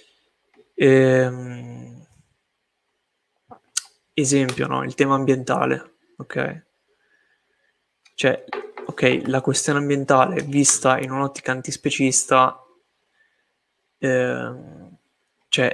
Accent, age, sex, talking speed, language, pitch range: native, 20-39, male, 70 wpm, Italian, 130-155 Hz